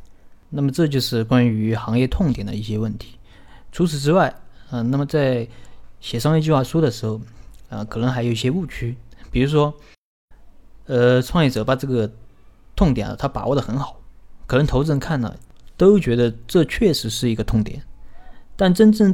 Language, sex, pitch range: Chinese, male, 110-140 Hz